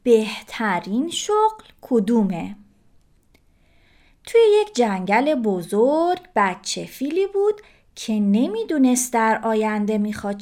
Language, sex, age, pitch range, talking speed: Persian, female, 30-49, 215-315 Hz, 85 wpm